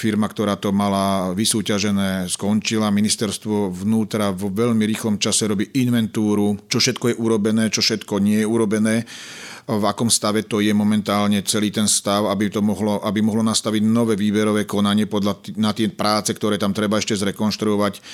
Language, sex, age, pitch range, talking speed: Slovak, male, 40-59, 95-110 Hz, 170 wpm